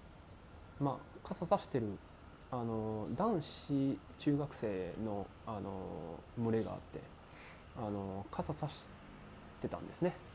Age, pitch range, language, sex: 20-39, 85-120 Hz, Japanese, male